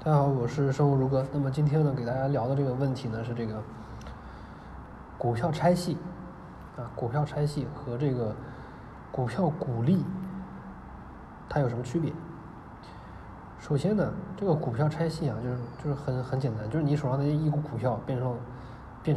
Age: 20-39